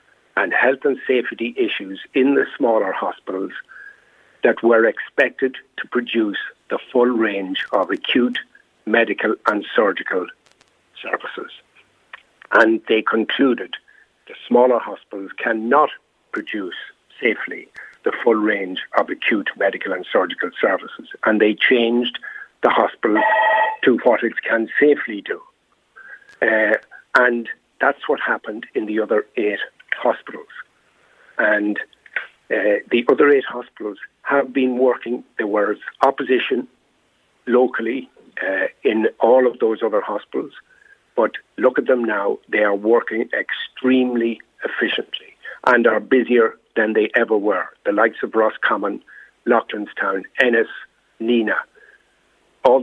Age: 60-79